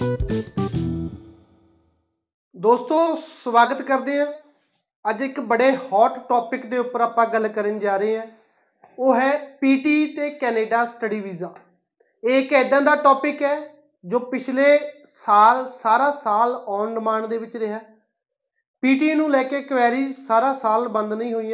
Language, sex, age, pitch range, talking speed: Punjabi, male, 30-49, 215-275 Hz, 135 wpm